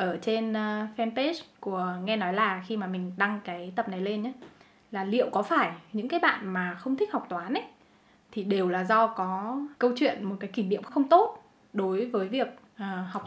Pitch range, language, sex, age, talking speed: 190-260 Hz, Vietnamese, female, 10-29, 210 wpm